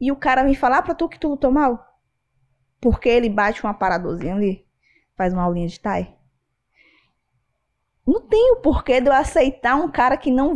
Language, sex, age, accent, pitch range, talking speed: Portuguese, female, 20-39, Brazilian, 185-260 Hz, 195 wpm